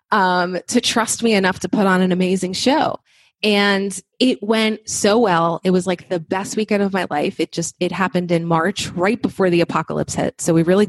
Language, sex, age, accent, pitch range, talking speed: English, female, 20-39, American, 180-220 Hz, 215 wpm